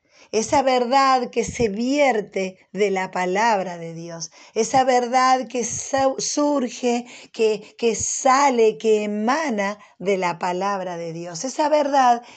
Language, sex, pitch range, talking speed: Spanish, female, 170-225 Hz, 125 wpm